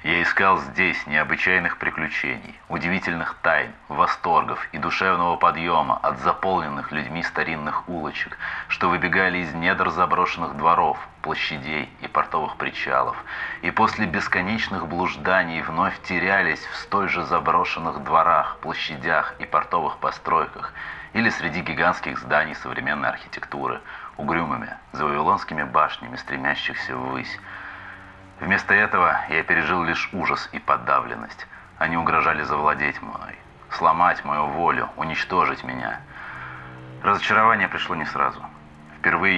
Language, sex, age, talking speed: Russian, male, 30-49, 115 wpm